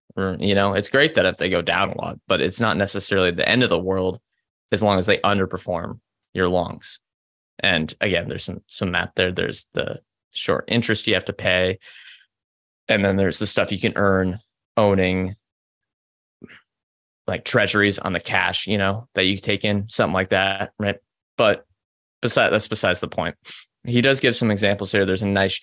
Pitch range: 95-110 Hz